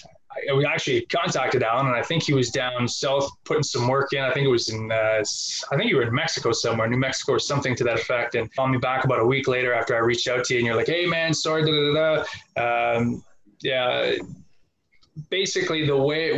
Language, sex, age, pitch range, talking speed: English, male, 20-39, 120-155 Hz, 240 wpm